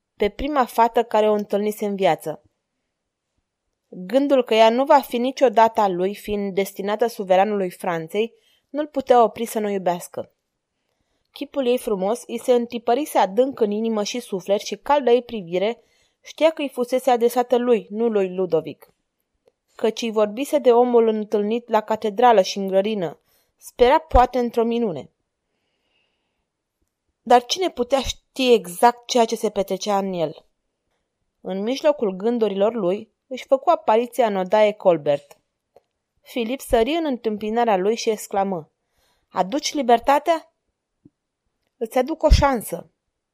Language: Romanian